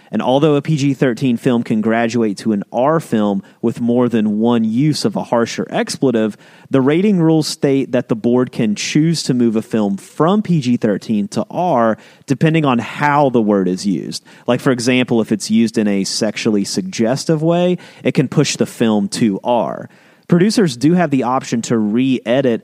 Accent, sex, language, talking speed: American, male, English, 185 wpm